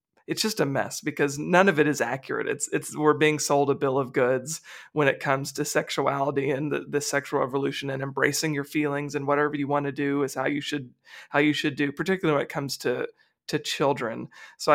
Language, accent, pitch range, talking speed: English, American, 140-155 Hz, 225 wpm